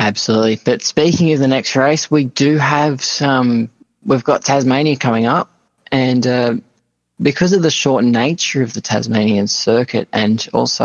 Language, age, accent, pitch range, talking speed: English, 20-39, Australian, 110-135 Hz, 160 wpm